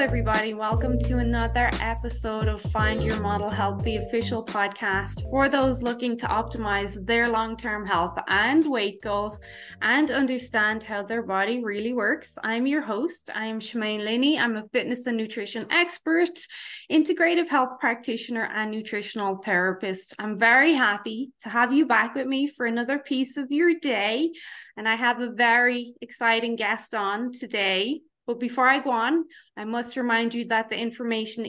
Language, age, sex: English, 20-39, female